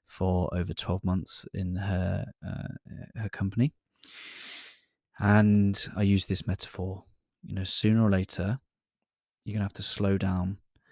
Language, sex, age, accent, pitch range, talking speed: English, male, 20-39, British, 95-110 Hz, 135 wpm